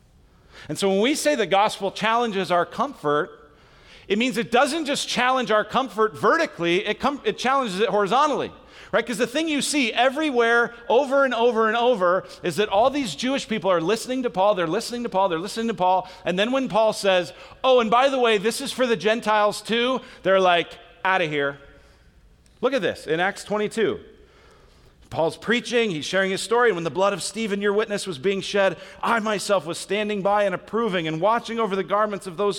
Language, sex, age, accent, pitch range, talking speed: English, male, 40-59, American, 180-240 Hz, 205 wpm